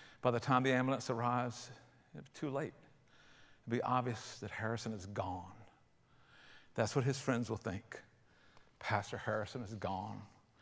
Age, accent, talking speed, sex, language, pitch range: 50-69, American, 145 wpm, male, English, 120-165 Hz